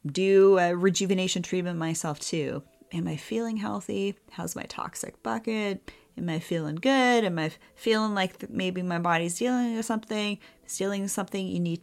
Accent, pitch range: American, 165-205 Hz